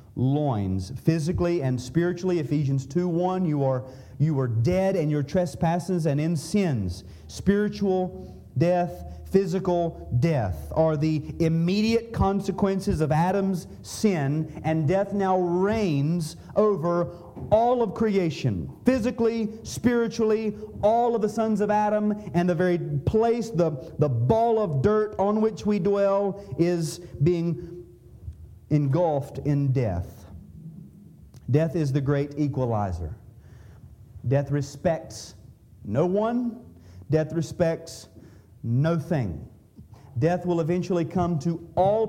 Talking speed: 115 wpm